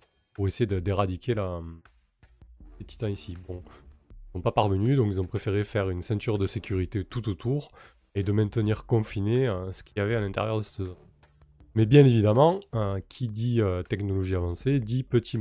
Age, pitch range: 20-39, 95-120 Hz